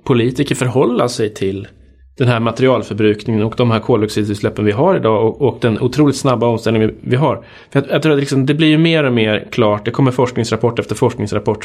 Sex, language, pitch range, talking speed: male, Swedish, 105-135 Hz, 210 wpm